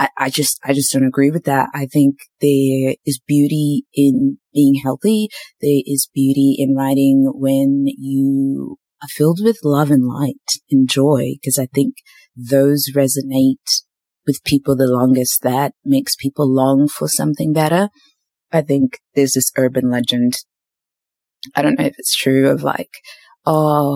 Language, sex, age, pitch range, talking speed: English, female, 20-39, 130-145 Hz, 155 wpm